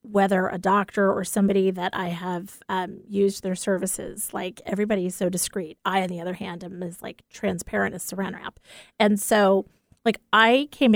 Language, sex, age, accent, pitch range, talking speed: English, female, 30-49, American, 185-215 Hz, 185 wpm